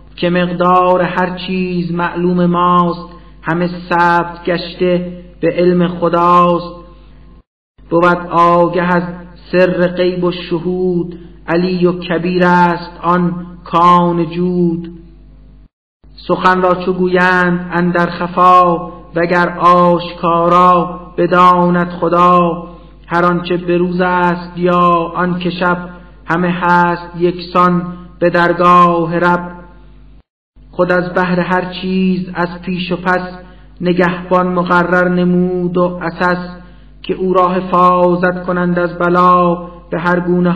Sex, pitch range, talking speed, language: male, 170-180 Hz, 110 wpm, Persian